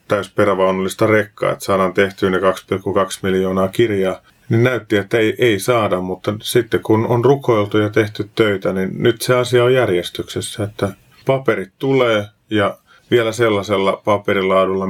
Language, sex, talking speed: Finnish, male, 150 wpm